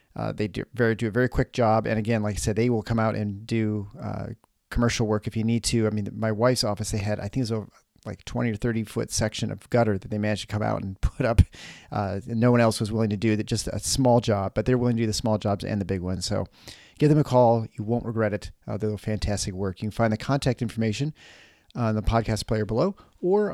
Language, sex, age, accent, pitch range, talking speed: English, male, 40-59, American, 105-120 Hz, 275 wpm